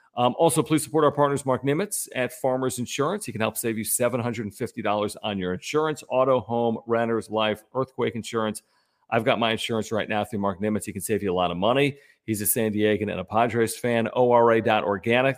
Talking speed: 205 wpm